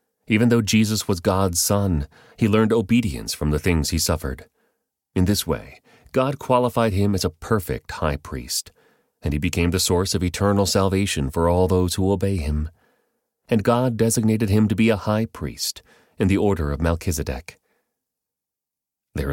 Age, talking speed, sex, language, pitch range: 30-49, 170 wpm, male, English, 85-105 Hz